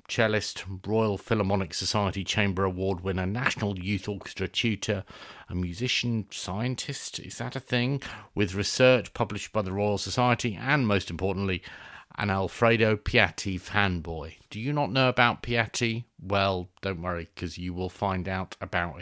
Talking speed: 150 wpm